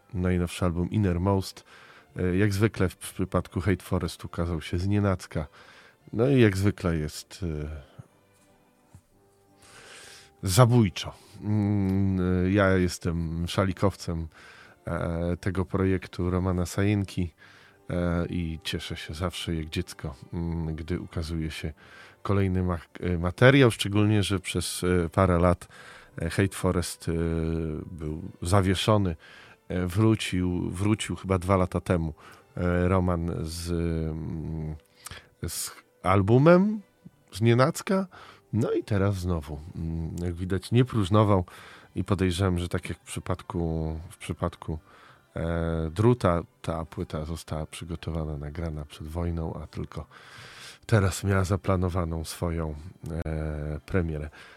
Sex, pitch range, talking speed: male, 85-100 Hz, 100 wpm